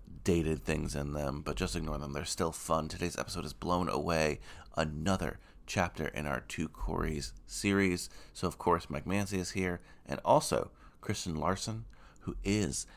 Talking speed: 165 wpm